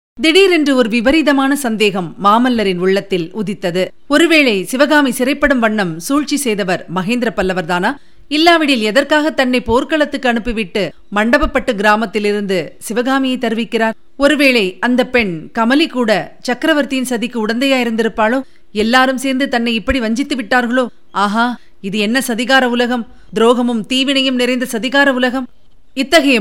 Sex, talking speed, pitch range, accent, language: female, 115 wpm, 195-260 Hz, native, Tamil